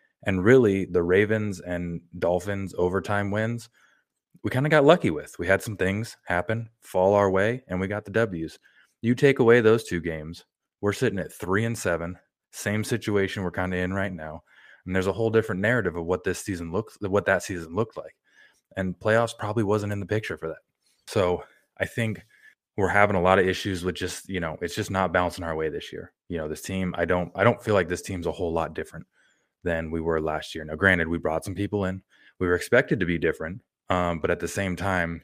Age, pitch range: 20-39, 90-100 Hz